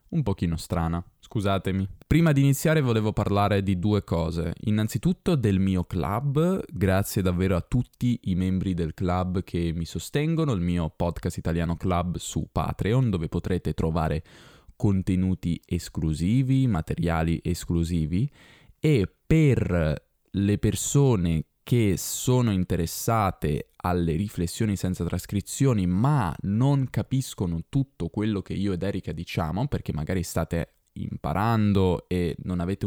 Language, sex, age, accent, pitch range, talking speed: Italian, male, 20-39, native, 85-120 Hz, 130 wpm